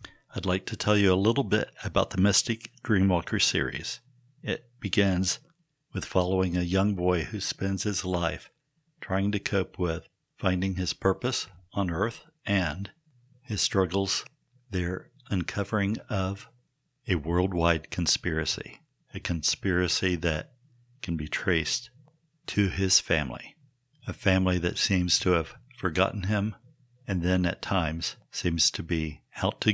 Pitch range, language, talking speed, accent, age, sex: 90-115 Hz, English, 135 wpm, American, 60-79, male